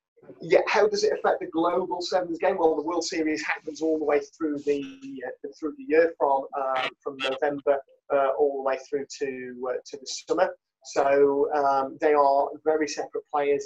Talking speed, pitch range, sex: 195 wpm, 145-215 Hz, male